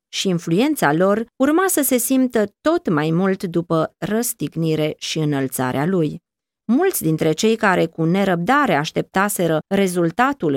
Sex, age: female, 20-39